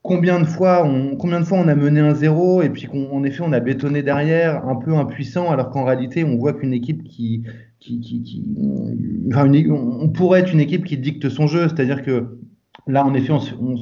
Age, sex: 20-39, male